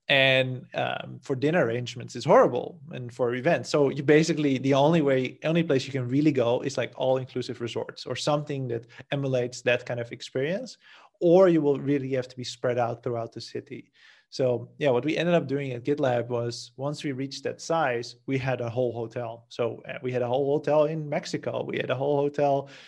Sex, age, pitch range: male, 30-49, 125-145 Hz